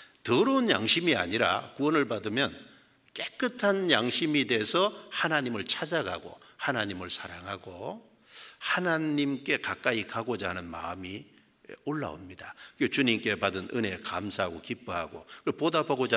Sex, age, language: male, 60-79, Korean